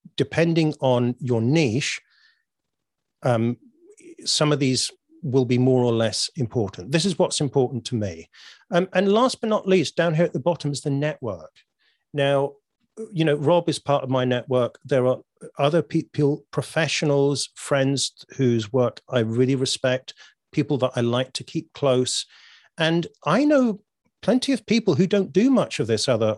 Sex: male